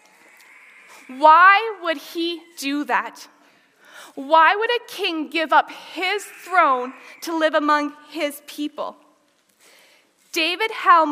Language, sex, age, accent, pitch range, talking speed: English, female, 20-39, American, 275-340 Hz, 110 wpm